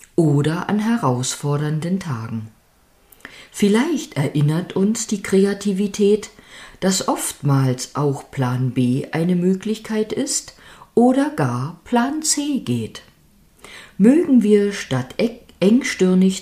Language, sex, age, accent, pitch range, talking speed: German, female, 50-69, German, 135-210 Hz, 95 wpm